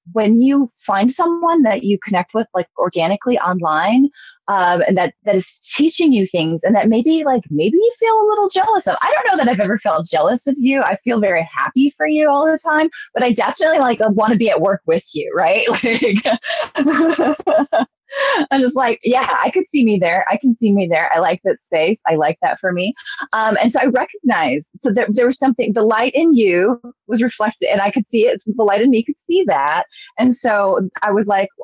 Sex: female